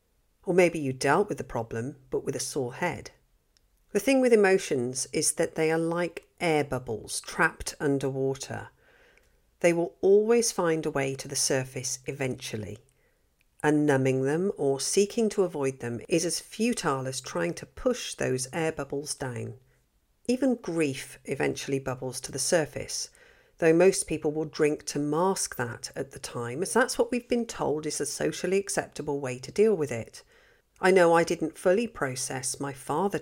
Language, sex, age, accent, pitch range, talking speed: English, female, 50-69, British, 135-195 Hz, 170 wpm